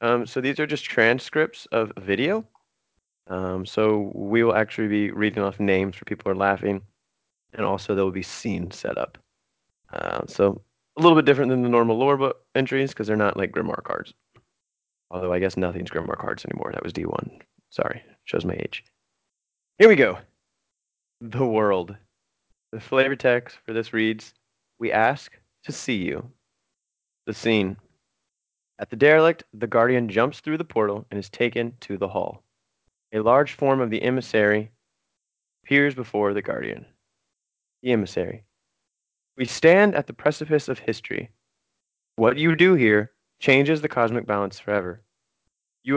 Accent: American